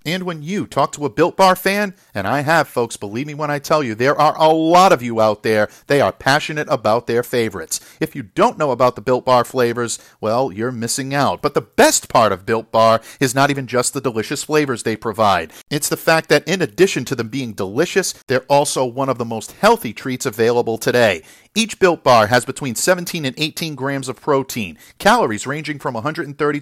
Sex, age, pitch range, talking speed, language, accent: male, 50-69, 125-160 Hz, 220 wpm, English, American